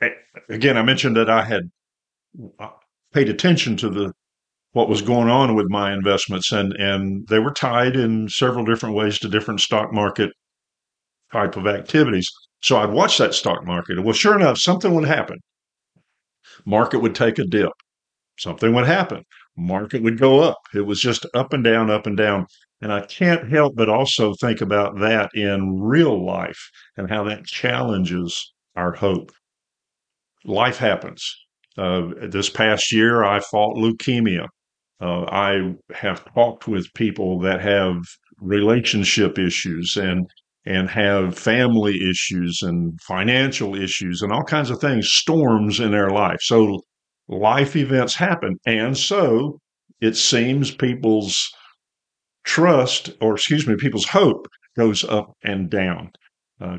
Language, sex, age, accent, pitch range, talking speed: English, male, 50-69, American, 100-120 Hz, 150 wpm